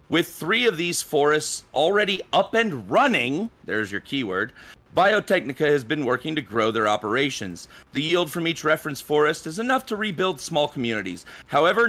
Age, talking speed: 40-59, 165 wpm